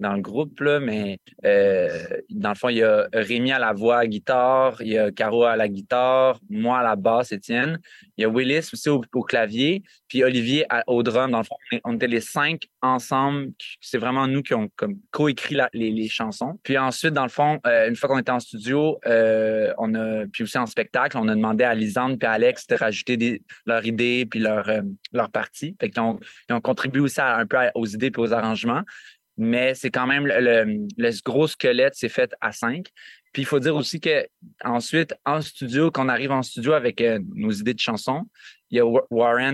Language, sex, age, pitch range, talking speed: French, male, 20-39, 115-145 Hz, 225 wpm